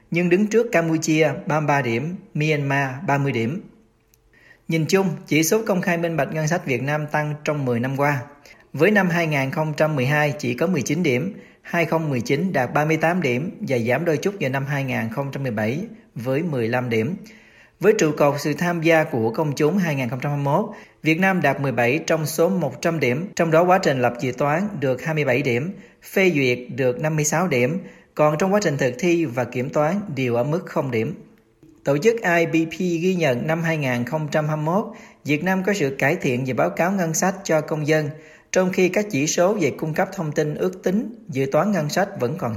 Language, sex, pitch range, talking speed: Vietnamese, male, 140-175 Hz, 185 wpm